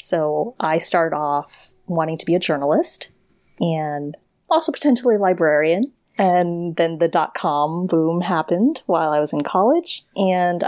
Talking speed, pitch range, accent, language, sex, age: 145 wpm, 150-195 Hz, American, English, female, 30-49